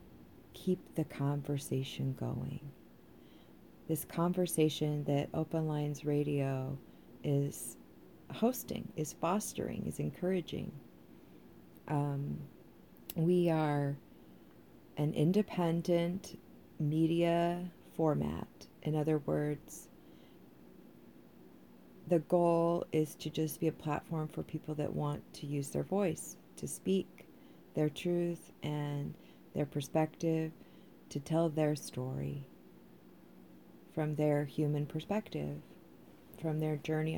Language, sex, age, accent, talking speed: English, female, 40-59, American, 95 wpm